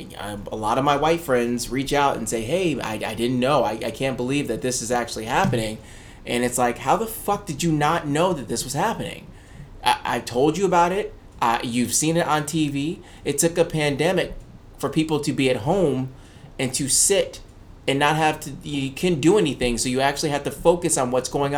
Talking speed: 220 wpm